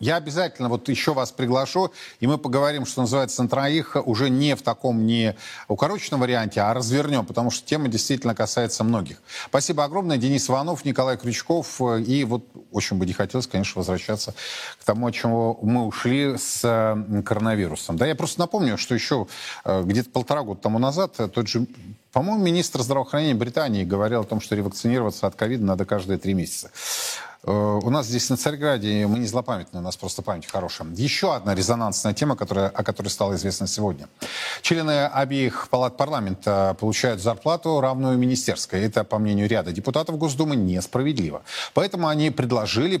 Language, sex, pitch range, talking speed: Russian, male, 105-140 Hz, 165 wpm